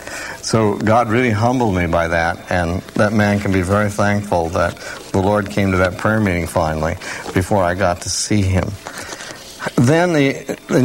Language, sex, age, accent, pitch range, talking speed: English, male, 60-79, American, 100-140 Hz, 175 wpm